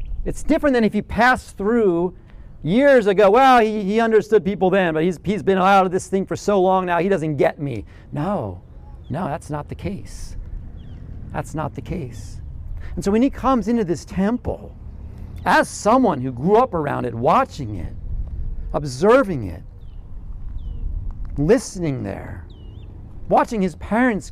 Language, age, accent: English, 40-59, American